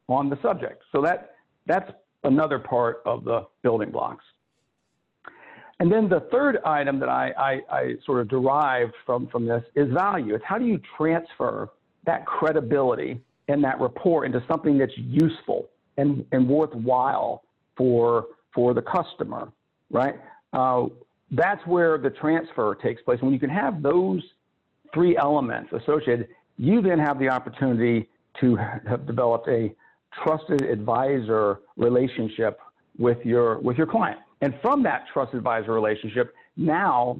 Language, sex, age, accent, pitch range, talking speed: English, male, 50-69, American, 120-155 Hz, 145 wpm